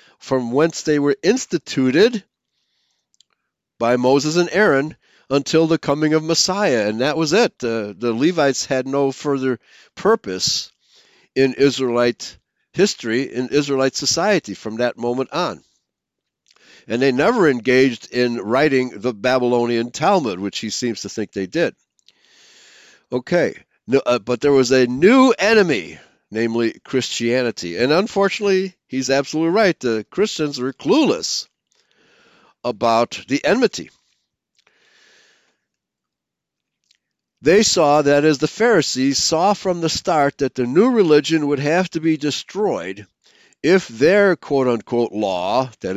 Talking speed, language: 130 wpm, English